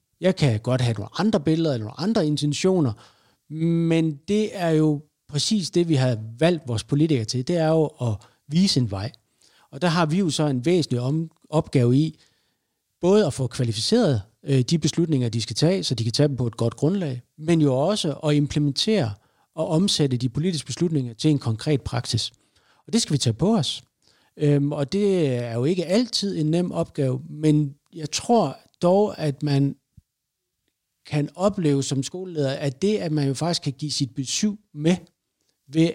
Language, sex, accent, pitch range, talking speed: Danish, male, native, 130-165 Hz, 185 wpm